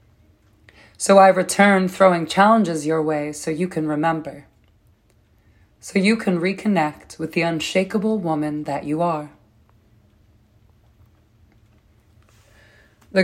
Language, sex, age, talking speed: English, female, 20-39, 105 wpm